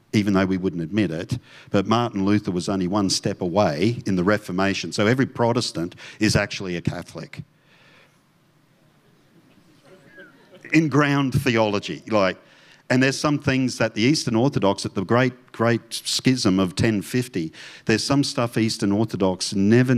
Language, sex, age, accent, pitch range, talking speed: English, male, 50-69, Australian, 95-130 Hz, 145 wpm